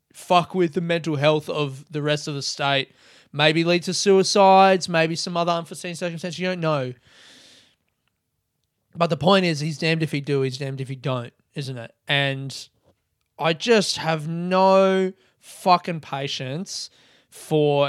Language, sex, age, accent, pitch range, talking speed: English, male, 20-39, Australian, 145-180 Hz, 160 wpm